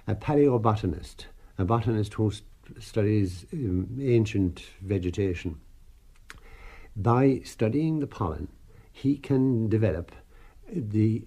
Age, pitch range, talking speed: 60-79, 95-115 Hz, 85 wpm